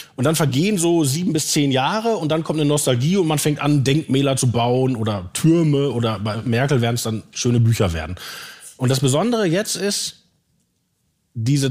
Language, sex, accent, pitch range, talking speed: German, male, German, 125-170 Hz, 190 wpm